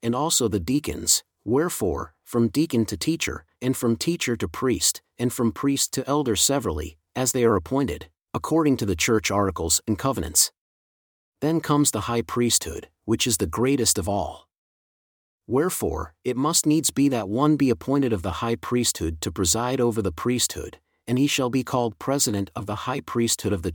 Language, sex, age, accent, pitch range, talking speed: English, male, 40-59, American, 100-130 Hz, 180 wpm